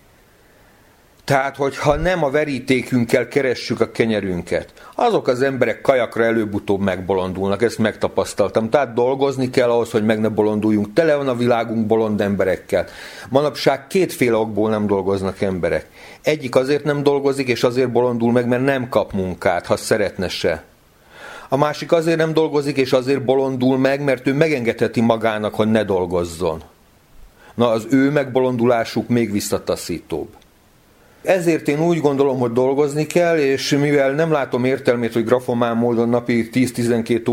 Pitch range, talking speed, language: 110-140 Hz, 145 wpm, Hungarian